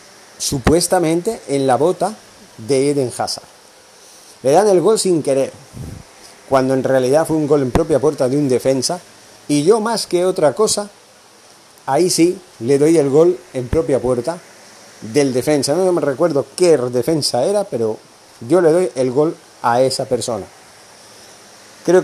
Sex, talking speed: male, 160 wpm